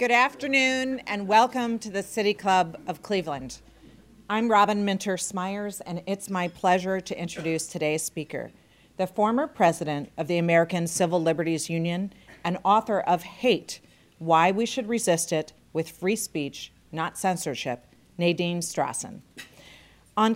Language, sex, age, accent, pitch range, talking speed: English, female, 40-59, American, 165-220 Hz, 140 wpm